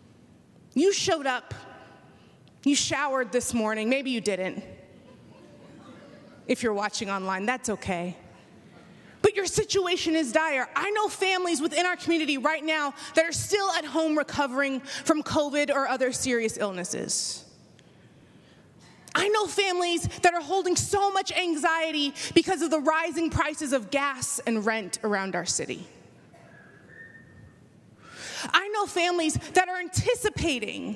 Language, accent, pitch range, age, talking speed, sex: English, American, 260-340 Hz, 20-39, 130 wpm, female